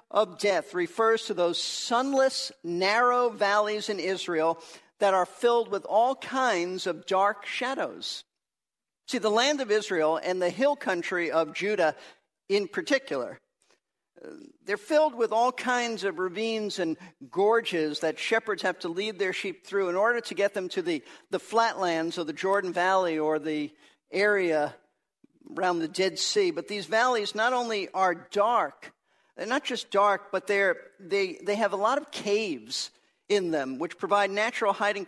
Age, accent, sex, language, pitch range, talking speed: 50-69, American, male, English, 180-225 Hz, 165 wpm